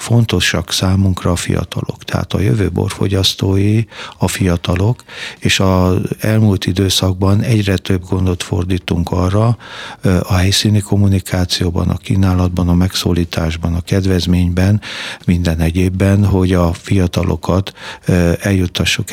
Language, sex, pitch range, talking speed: Hungarian, male, 90-100 Hz, 105 wpm